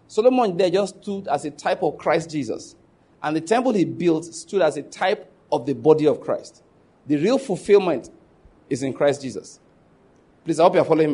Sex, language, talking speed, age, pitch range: male, English, 200 wpm, 40-59, 160-230 Hz